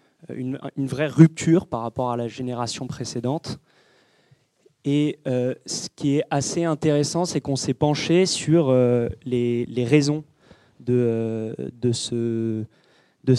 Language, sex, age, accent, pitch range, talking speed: French, male, 20-39, French, 125-150 Hz, 140 wpm